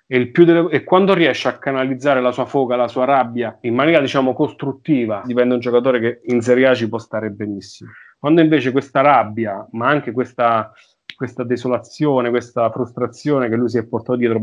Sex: male